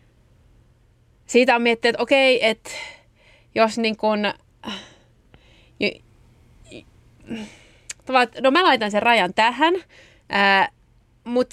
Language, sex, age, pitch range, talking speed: Finnish, female, 30-49, 205-260 Hz, 85 wpm